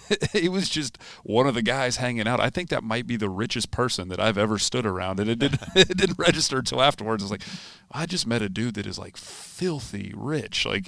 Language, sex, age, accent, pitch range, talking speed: English, male, 40-59, American, 95-120 Hz, 235 wpm